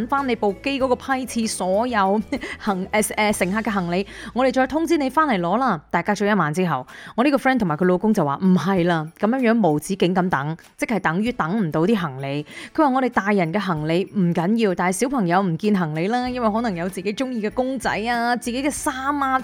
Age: 20-39